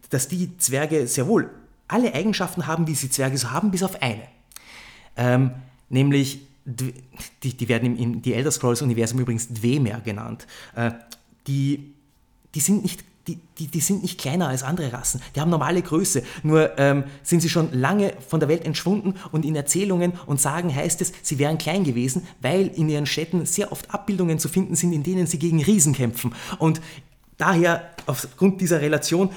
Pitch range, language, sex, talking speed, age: 125-170 Hz, German, male, 185 wpm, 30-49